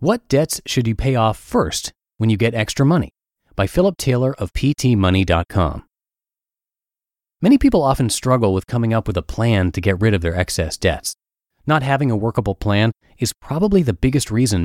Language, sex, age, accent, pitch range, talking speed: English, male, 30-49, American, 95-135 Hz, 180 wpm